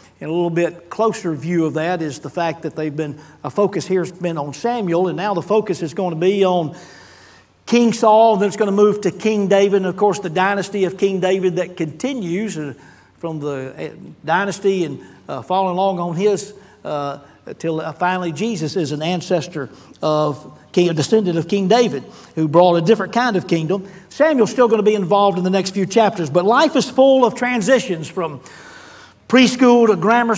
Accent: American